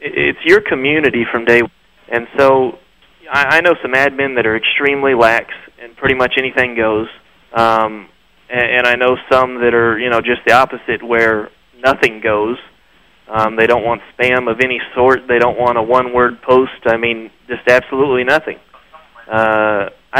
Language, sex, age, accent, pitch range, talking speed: English, male, 30-49, American, 110-130 Hz, 165 wpm